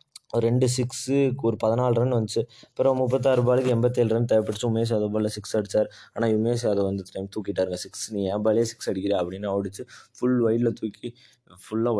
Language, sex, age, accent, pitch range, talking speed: Tamil, male, 20-39, native, 95-115 Hz, 175 wpm